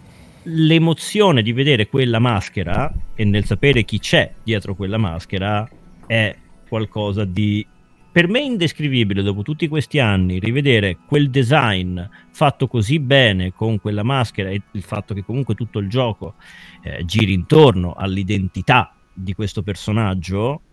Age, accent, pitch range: 40-59, native, 100-140 Hz